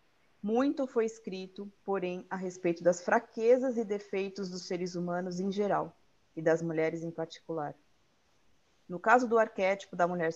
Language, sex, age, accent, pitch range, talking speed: Portuguese, female, 30-49, Brazilian, 175-225 Hz, 150 wpm